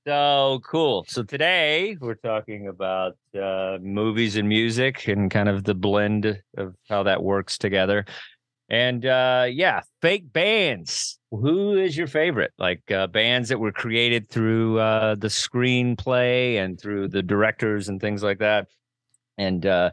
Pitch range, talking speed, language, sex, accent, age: 100-125 Hz, 150 wpm, English, male, American, 40-59